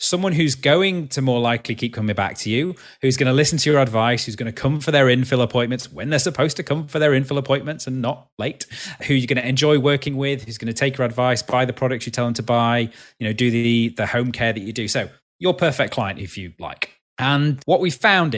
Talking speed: 260 wpm